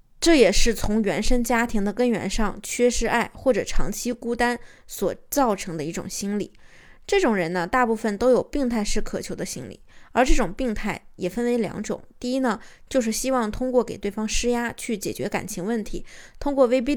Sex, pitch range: female, 205-255 Hz